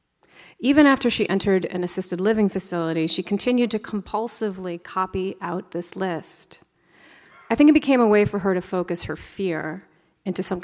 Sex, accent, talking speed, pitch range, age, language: female, American, 170 wpm, 175-210 Hz, 30-49, English